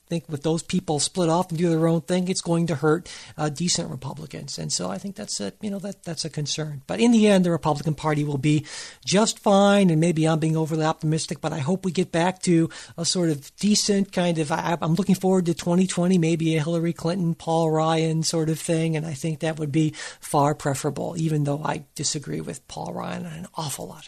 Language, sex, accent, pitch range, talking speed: English, male, American, 155-190 Hz, 235 wpm